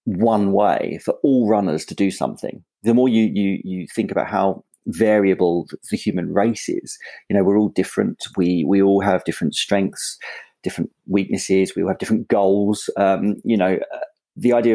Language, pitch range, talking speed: English, 95-115 Hz, 180 wpm